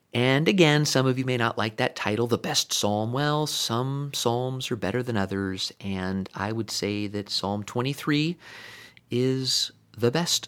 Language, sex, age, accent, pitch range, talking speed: English, male, 30-49, American, 105-130 Hz, 170 wpm